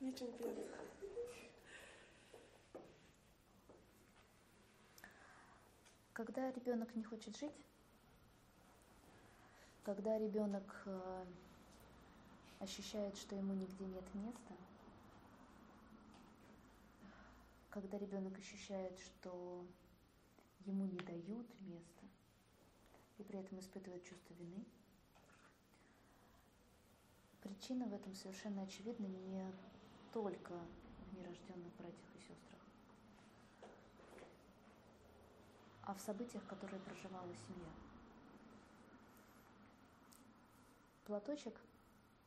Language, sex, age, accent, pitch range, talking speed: Russian, female, 20-39, native, 185-215 Hz, 65 wpm